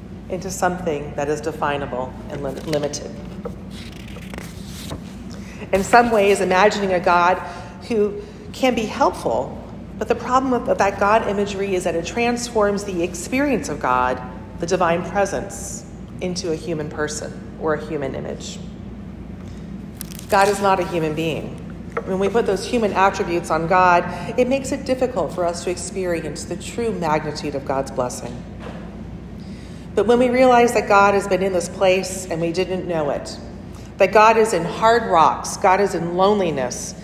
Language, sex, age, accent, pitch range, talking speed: English, female, 40-59, American, 175-225 Hz, 155 wpm